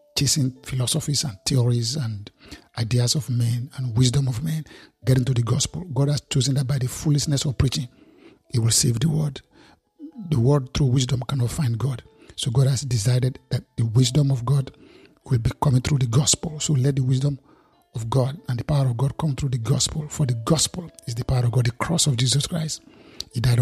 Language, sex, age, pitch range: English, male, 50-69, 125-145 Hz